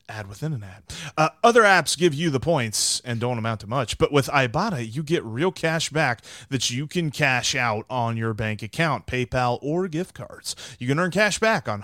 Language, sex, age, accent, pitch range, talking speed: English, male, 30-49, American, 115-170 Hz, 215 wpm